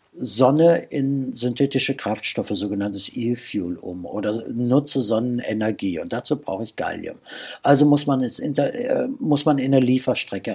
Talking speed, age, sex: 150 wpm, 60-79, male